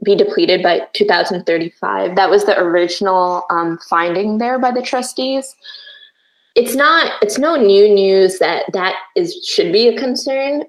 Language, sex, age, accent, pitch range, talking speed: English, female, 20-39, American, 180-225 Hz, 150 wpm